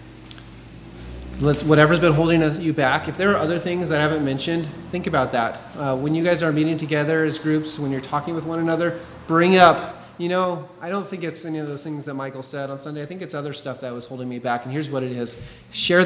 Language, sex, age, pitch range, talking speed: English, male, 30-49, 120-155 Hz, 245 wpm